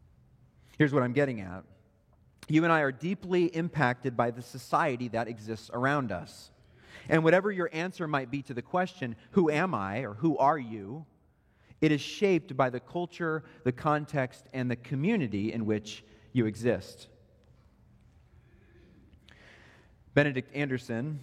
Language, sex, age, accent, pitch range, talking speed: English, male, 40-59, American, 115-160 Hz, 145 wpm